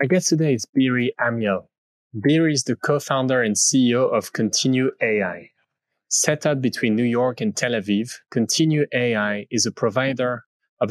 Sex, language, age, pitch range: male, English, 20-39, 105-130 Hz